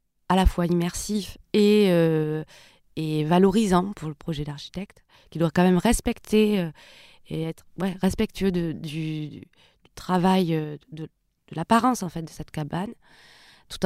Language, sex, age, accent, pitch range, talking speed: French, female, 20-39, French, 165-215 Hz, 150 wpm